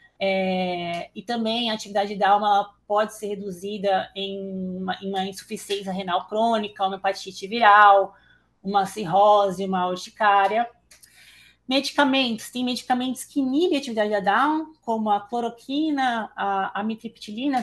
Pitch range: 200-240 Hz